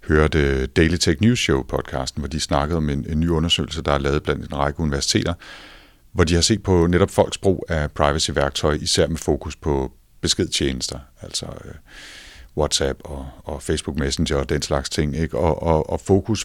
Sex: male